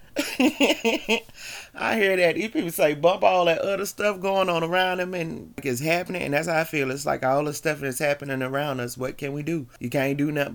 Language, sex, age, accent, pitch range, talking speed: English, male, 30-49, American, 125-175 Hz, 235 wpm